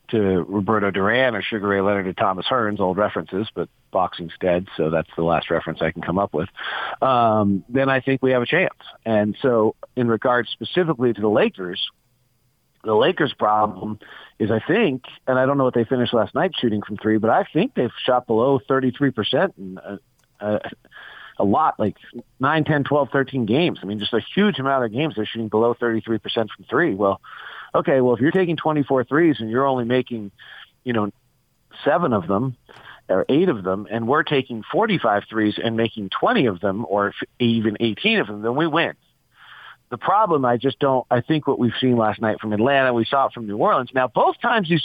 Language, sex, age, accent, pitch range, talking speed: English, male, 40-59, American, 105-130 Hz, 205 wpm